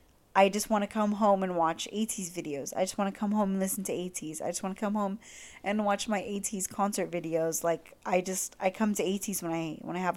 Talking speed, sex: 260 wpm, female